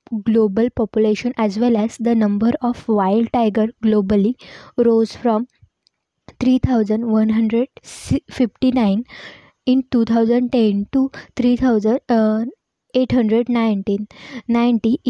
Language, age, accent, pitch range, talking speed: English, 20-39, Indian, 215-245 Hz, 70 wpm